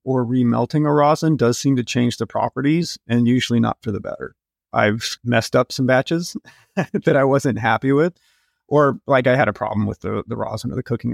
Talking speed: 210 wpm